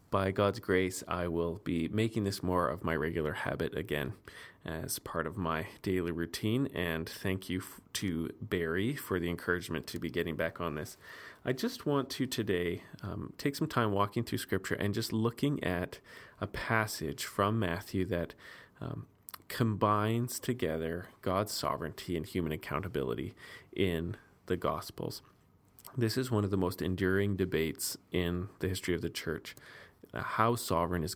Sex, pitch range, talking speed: male, 90-110 Hz, 160 wpm